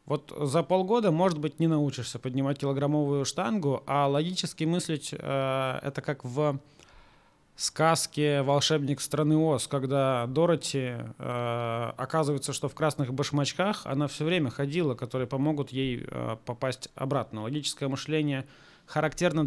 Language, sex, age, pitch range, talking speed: Russian, male, 20-39, 135-165 Hz, 130 wpm